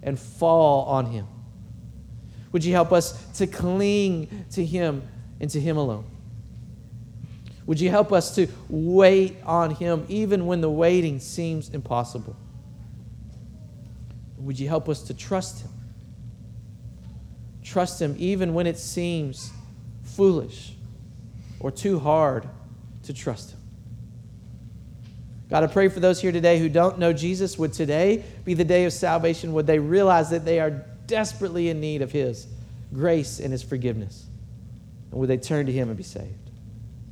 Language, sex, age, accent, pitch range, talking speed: English, male, 40-59, American, 115-165 Hz, 150 wpm